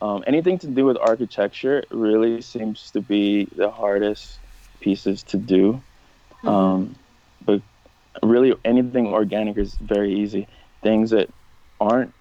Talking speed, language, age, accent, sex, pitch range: 130 wpm, English, 20-39, American, male, 100-110 Hz